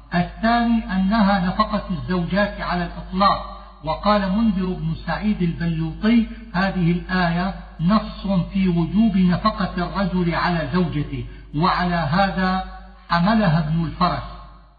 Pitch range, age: 165-200 Hz, 50-69